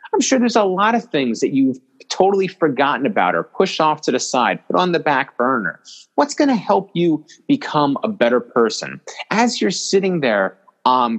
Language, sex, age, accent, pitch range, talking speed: English, male, 30-49, American, 120-190 Hz, 200 wpm